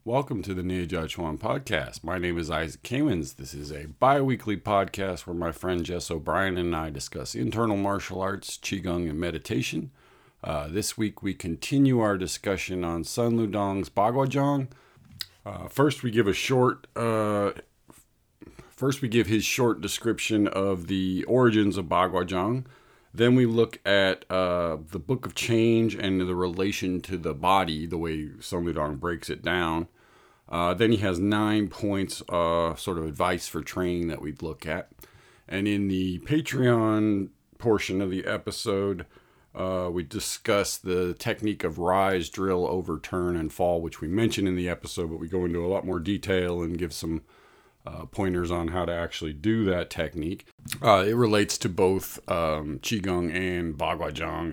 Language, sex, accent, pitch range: English, male, American, 85-105 Hz